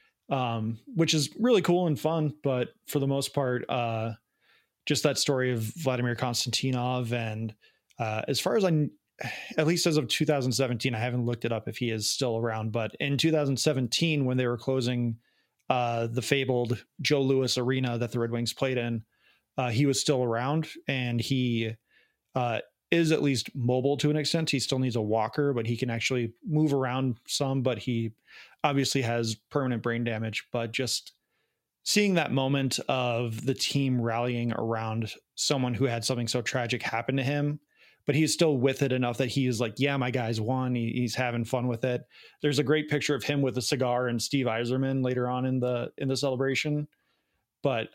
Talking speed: 190 wpm